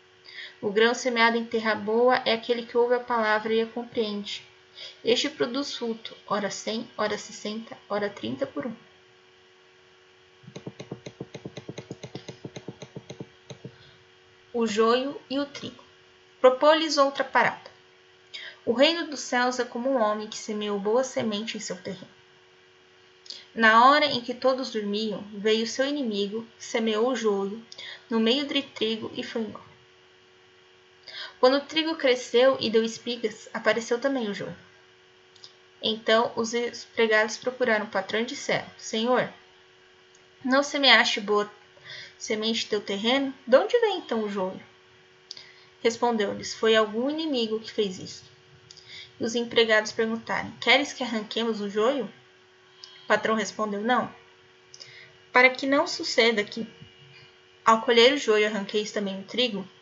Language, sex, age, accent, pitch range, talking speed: Portuguese, female, 10-29, Brazilian, 150-245 Hz, 135 wpm